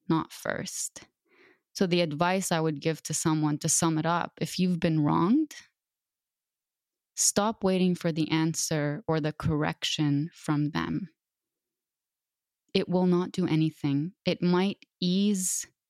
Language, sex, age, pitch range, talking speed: English, female, 20-39, 155-195 Hz, 135 wpm